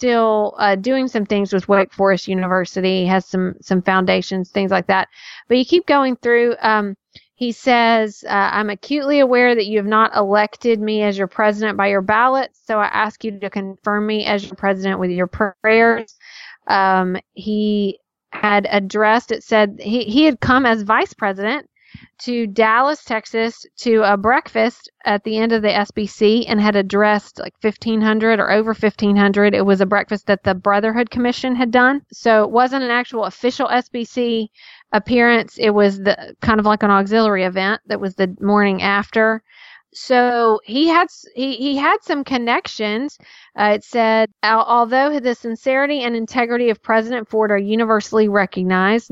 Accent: American